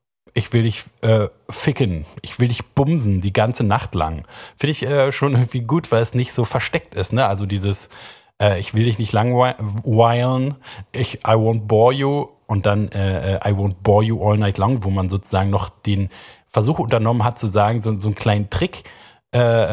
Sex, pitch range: male, 100-125 Hz